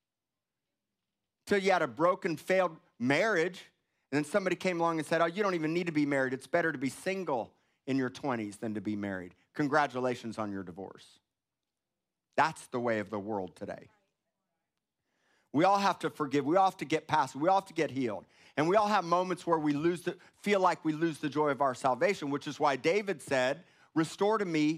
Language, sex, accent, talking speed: English, male, American, 215 wpm